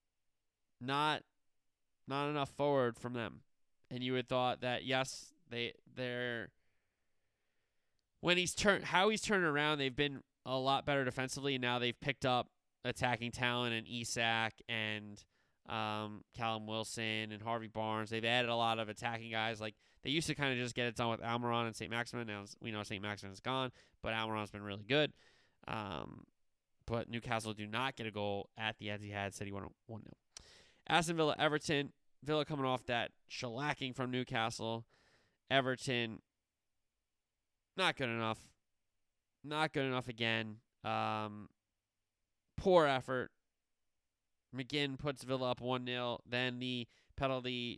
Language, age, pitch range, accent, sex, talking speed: English, 20-39, 110-130 Hz, American, male, 155 wpm